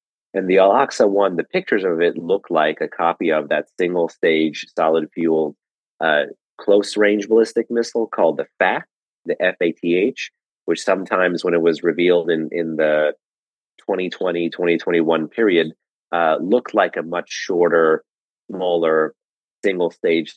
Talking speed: 125 wpm